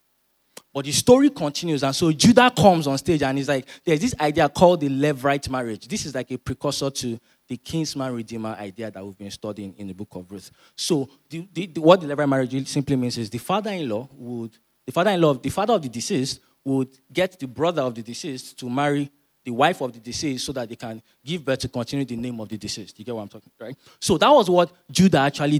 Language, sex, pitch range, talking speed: English, male, 120-165 Hz, 225 wpm